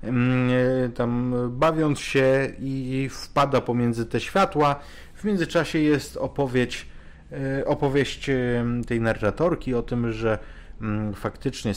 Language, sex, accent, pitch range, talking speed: Polish, male, native, 100-140 Hz, 95 wpm